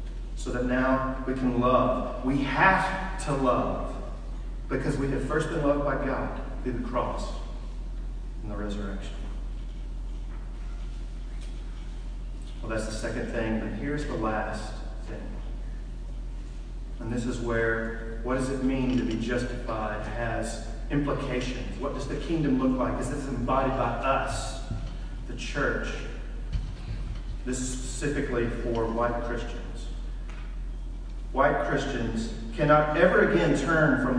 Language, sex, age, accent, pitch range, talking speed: English, male, 40-59, American, 115-145 Hz, 130 wpm